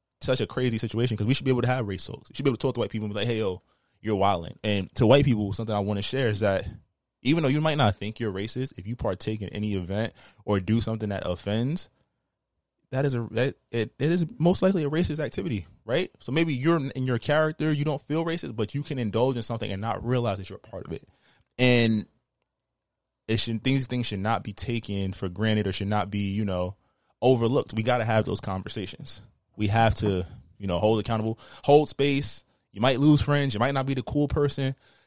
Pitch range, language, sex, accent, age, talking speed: 105-130 Hz, English, male, American, 20-39, 235 wpm